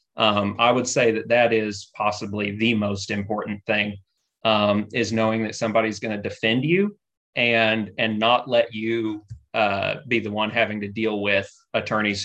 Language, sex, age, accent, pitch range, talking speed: English, male, 30-49, American, 110-150 Hz, 170 wpm